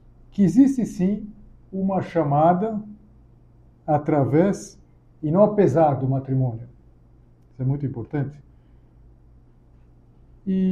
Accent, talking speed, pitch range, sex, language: Brazilian, 90 wpm, 125-170 Hz, male, Portuguese